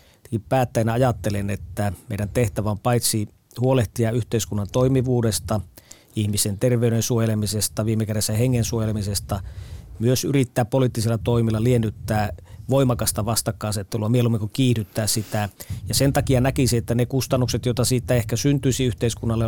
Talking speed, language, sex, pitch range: 125 wpm, Finnish, male, 110-125 Hz